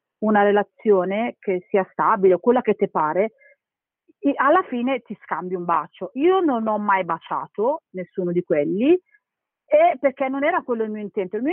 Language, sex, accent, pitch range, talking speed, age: Italian, female, native, 190-245 Hz, 180 wpm, 40-59